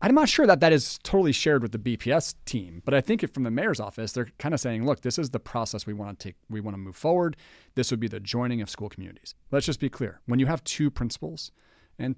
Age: 40-59